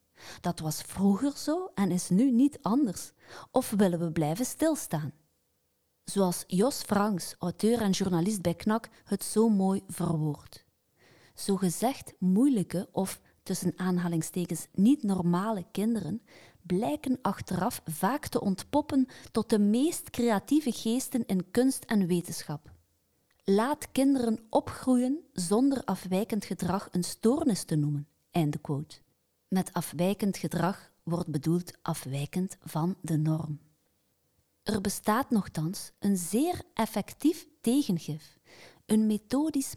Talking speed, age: 120 wpm, 30-49